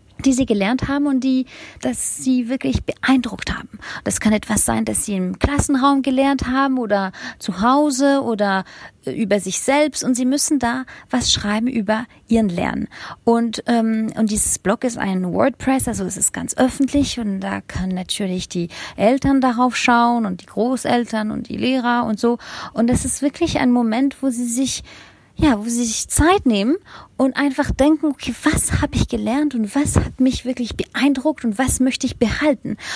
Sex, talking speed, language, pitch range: female, 180 wpm, German, 215-270 Hz